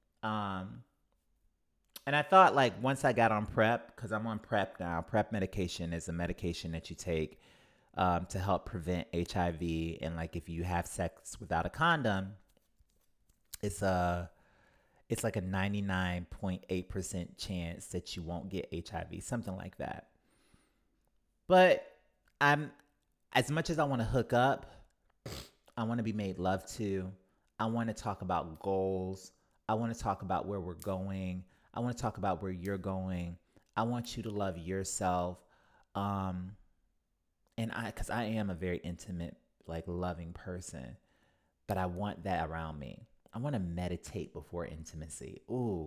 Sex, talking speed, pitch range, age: male, 155 wpm, 85-110 Hz, 30-49